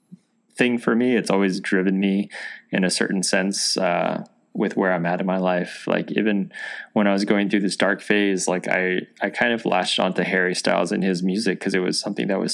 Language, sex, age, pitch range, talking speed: English, male, 20-39, 90-105 Hz, 225 wpm